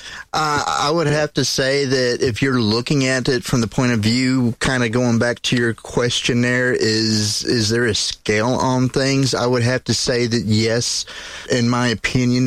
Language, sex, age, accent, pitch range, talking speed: English, male, 30-49, American, 110-130 Hz, 195 wpm